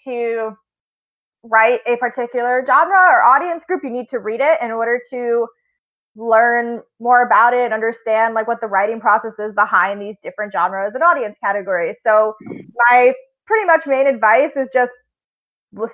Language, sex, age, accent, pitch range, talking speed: English, female, 20-39, American, 230-285 Hz, 160 wpm